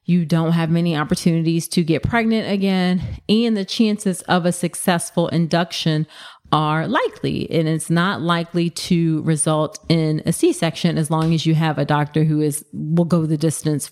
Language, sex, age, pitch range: English, female, 30-49, 160-185 Hz